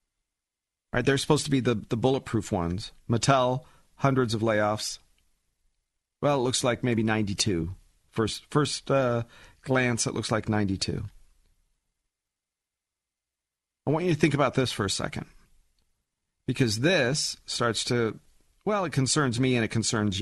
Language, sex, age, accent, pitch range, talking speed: English, male, 40-59, American, 105-145 Hz, 140 wpm